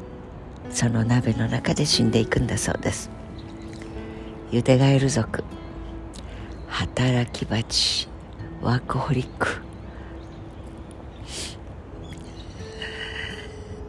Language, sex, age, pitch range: Japanese, female, 60-79, 90-125 Hz